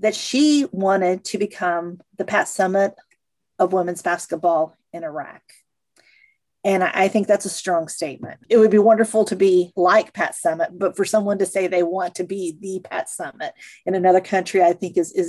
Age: 40-59